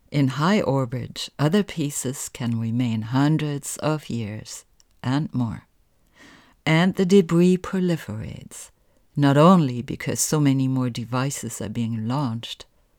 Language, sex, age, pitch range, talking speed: English, female, 60-79, 120-155 Hz, 120 wpm